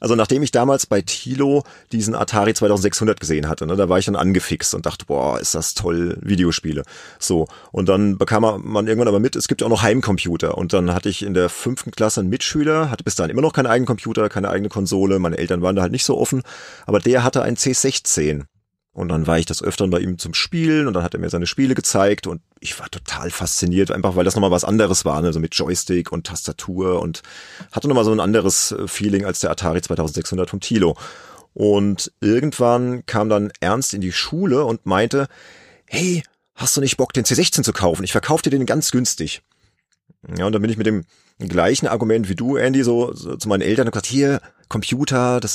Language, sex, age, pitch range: German, male, 30-49, 95-125 Hz